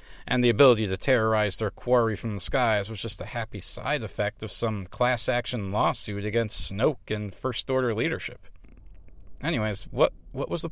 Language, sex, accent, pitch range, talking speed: English, male, American, 105-130 Hz, 175 wpm